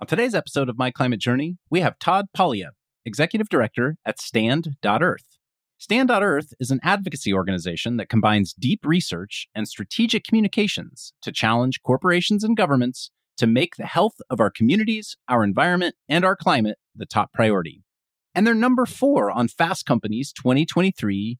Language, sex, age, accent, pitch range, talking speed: English, male, 30-49, American, 120-195 Hz, 155 wpm